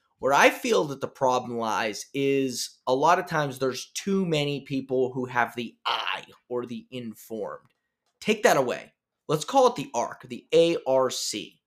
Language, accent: English, American